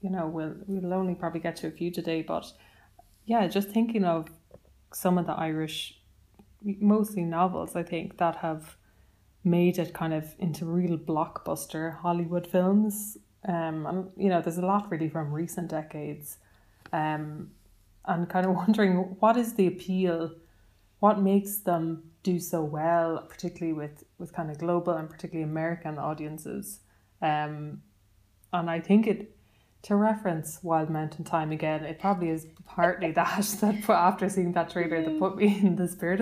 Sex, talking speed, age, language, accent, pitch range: female, 160 wpm, 20-39, English, Irish, 155-190 Hz